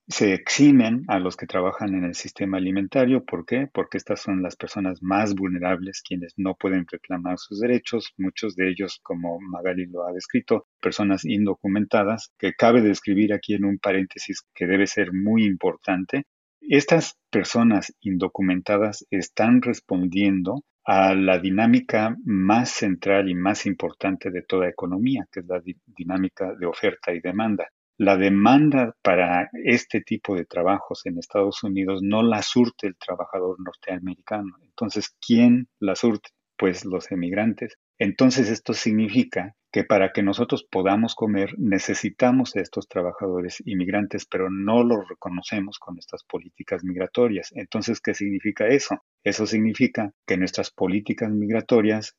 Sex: male